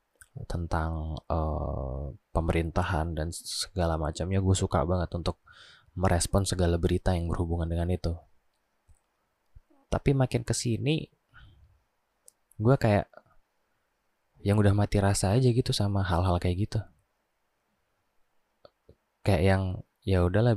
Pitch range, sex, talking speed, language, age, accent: 85-105 Hz, male, 105 wpm, Indonesian, 20-39, native